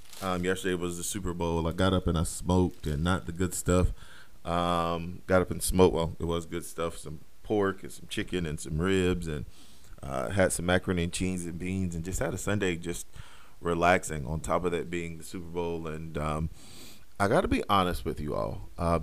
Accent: American